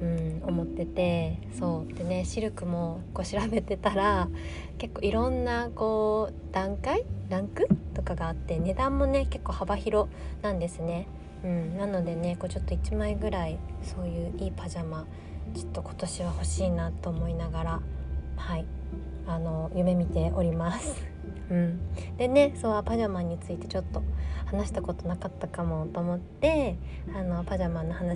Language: Japanese